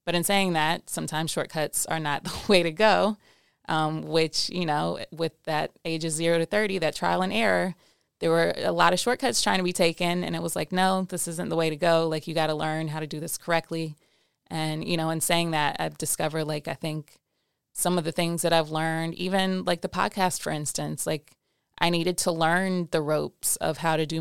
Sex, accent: female, American